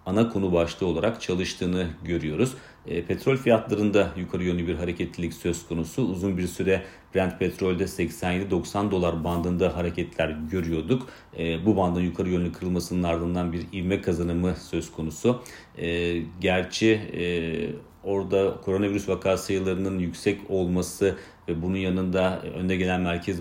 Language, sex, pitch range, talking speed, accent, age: Turkish, male, 85-95 Hz, 135 wpm, native, 40-59